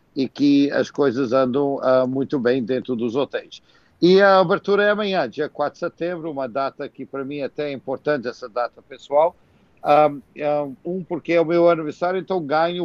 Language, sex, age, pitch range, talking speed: Portuguese, male, 60-79, 135-160 Hz, 180 wpm